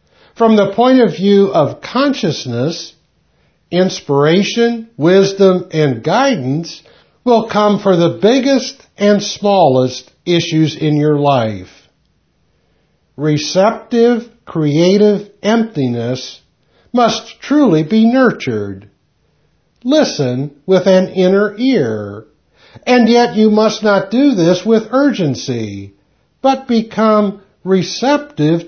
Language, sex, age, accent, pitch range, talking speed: English, male, 60-79, American, 150-225 Hz, 95 wpm